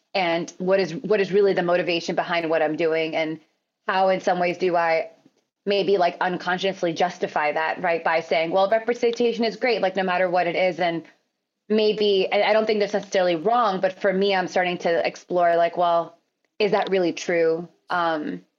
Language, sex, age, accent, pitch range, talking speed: English, female, 20-39, American, 170-200 Hz, 195 wpm